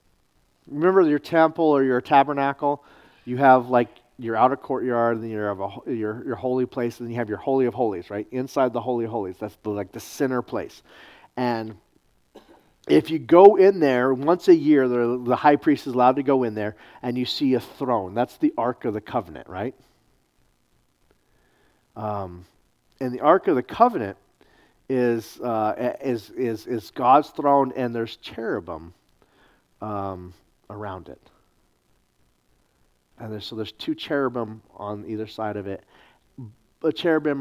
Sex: male